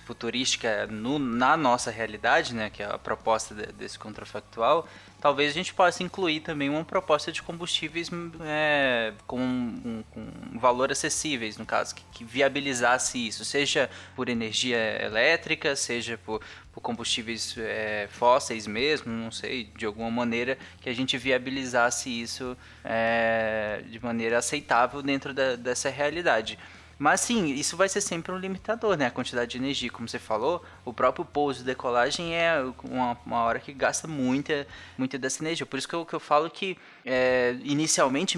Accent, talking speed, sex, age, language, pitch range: Brazilian, 155 wpm, male, 20-39, Portuguese, 120-150 Hz